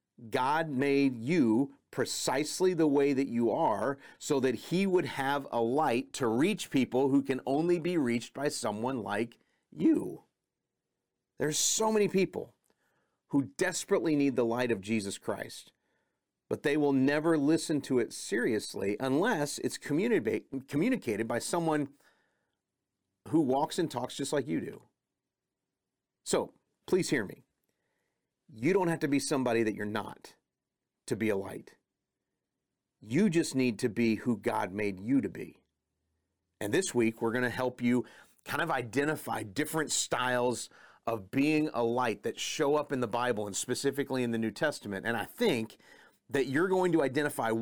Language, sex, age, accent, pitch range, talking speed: English, male, 40-59, American, 120-155 Hz, 160 wpm